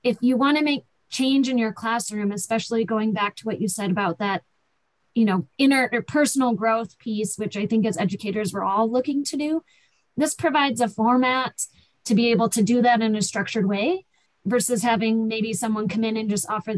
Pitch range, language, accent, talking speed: 210-255 Hz, English, American, 205 wpm